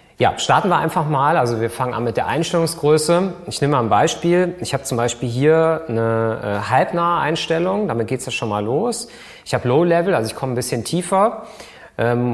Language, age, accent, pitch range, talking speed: German, 30-49, German, 115-155 Hz, 210 wpm